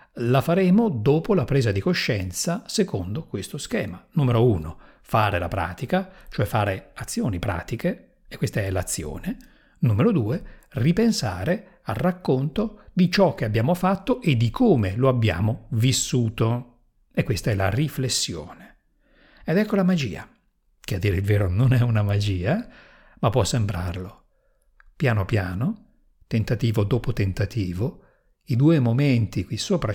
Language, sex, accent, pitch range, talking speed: Italian, male, native, 110-165 Hz, 140 wpm